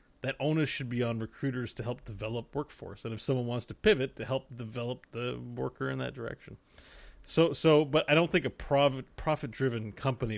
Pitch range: 115-150 Hz